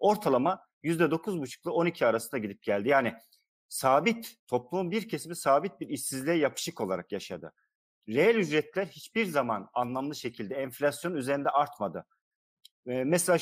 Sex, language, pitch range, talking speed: male, Turkish, 125-175 Hz, 135 wpm